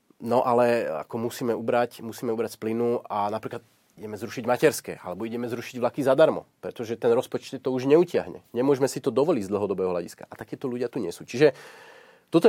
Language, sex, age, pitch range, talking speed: Slovak, male, 30-49, 115-145 Hz, 190 wpm